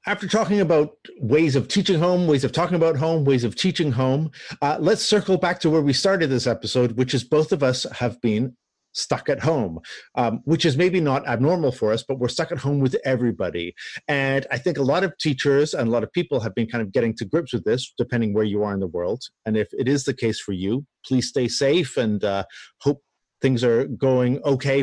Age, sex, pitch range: 50-69, male, 120-155 Hz